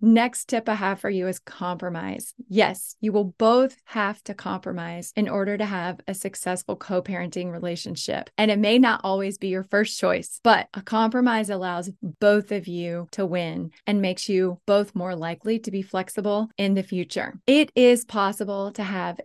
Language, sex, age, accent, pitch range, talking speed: English, female, 20-39, American, 185-220 Hz, 180 wpm